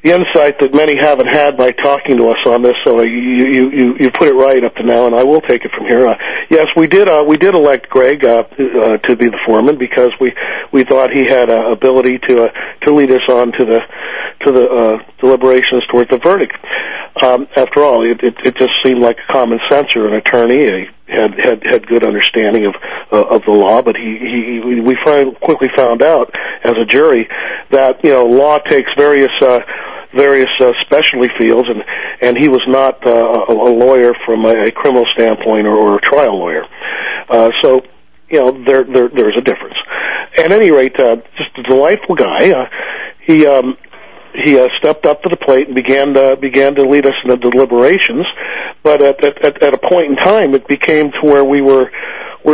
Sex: male